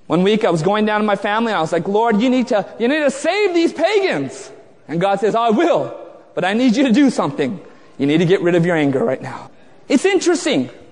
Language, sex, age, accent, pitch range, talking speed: English, male, 30-49, American, 220-315 Hz, 260 wpm